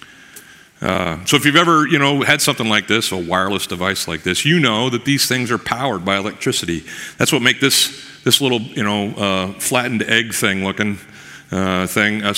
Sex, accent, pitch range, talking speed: male, American, 95-130 Hz, 200 wpm